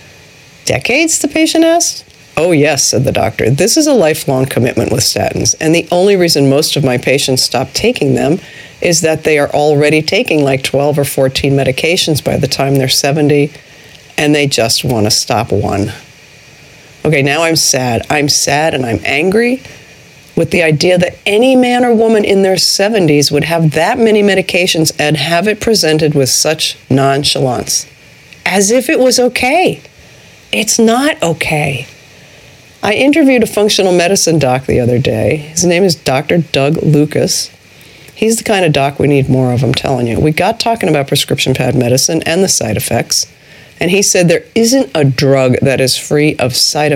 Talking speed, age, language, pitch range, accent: 180 wpm, 50-69, English, 135-185 Hz, American